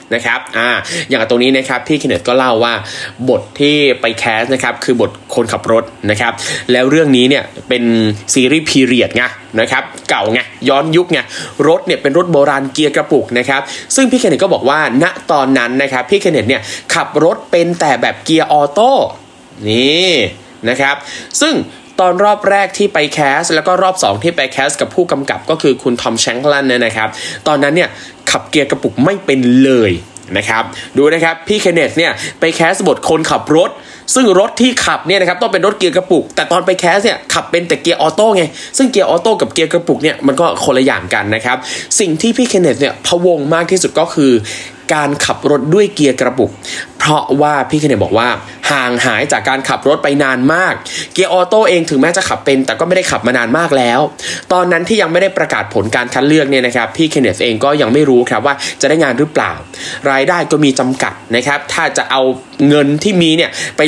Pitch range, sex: 130-180 Hz, male